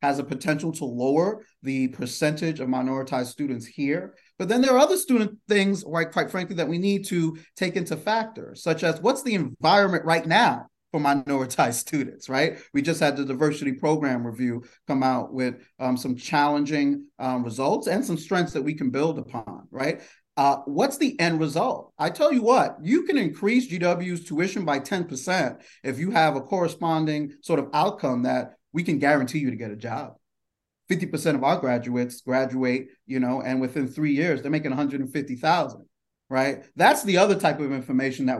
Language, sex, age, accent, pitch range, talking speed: English, male, 30-49, American, 130-165 Hz, 185 wpm